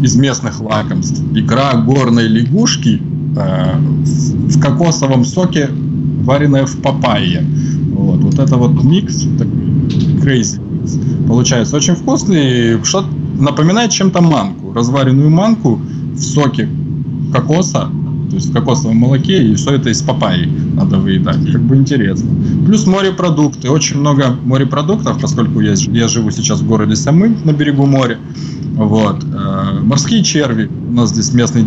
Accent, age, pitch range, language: native, 20-39, 130-160 Hz, Russian